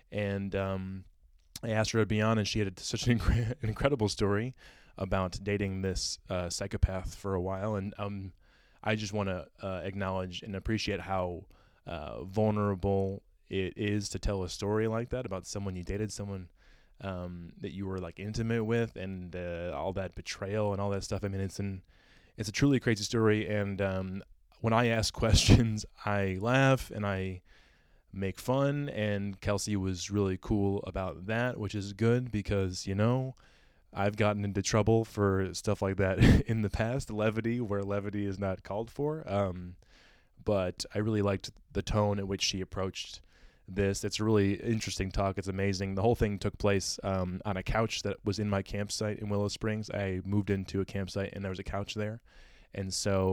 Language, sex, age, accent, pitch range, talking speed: English, male, 20-39, American, 95-110 Hz, 190 wpm